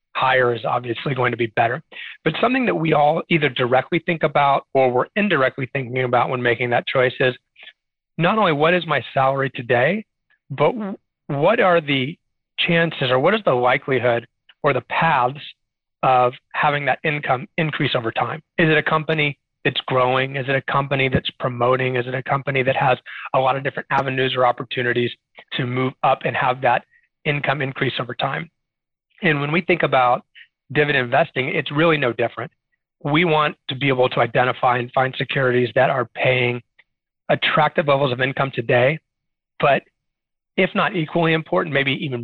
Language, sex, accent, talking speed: English, male, American, 175 wpm